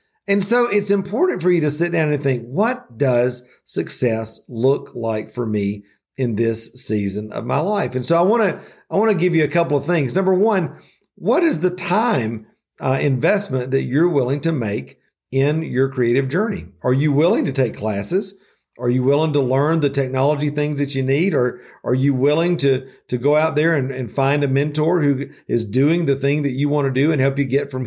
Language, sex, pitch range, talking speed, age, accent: English, male, 125-165 Hz, 215 wpm, 50-69, American